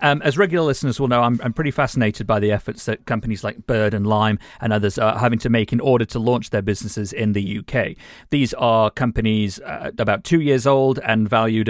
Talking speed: 225 wpm